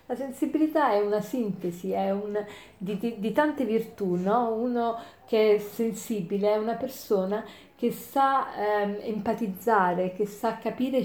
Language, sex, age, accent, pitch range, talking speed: Italian, female, 40-59, native, 200-235 Hz, 130 wpm